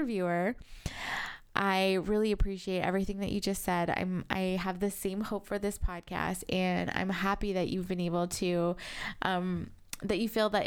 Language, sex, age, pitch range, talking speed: English, female, 20-39, 190-235 Hz, 175 wpm